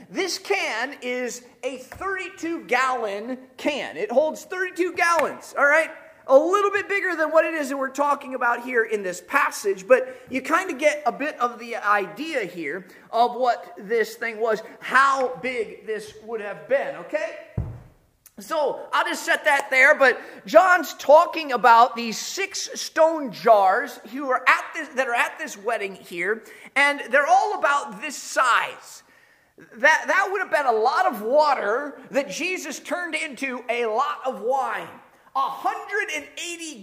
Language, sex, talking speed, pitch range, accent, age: English, male, 165 wpm, 240-320 Hz, American, 30-49